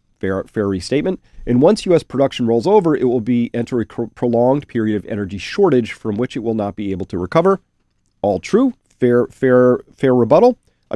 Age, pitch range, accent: 40-59, 105-150 Hz, American